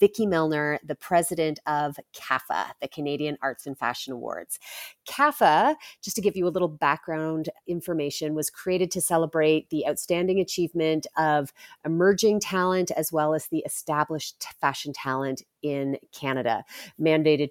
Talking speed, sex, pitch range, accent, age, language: 140 wpm, female, 145-175 Hz, American, 30-49, English